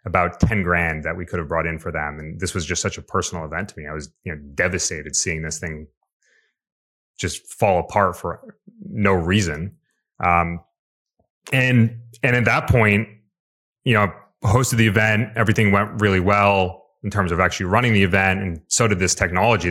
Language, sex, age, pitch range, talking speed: English, male, 30-49, 85-105 Hz, 190 wpm